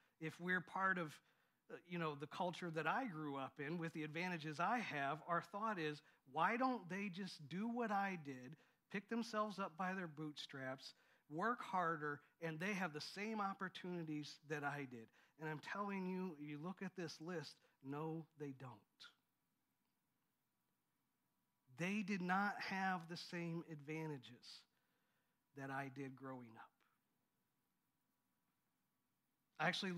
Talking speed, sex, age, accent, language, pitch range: 145 wpm, male, 50-69, American, English, 150-185 Hz